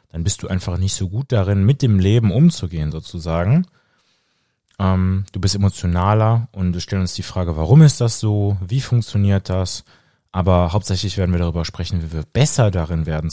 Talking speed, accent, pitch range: 185 wpm, German, 85-110 Hz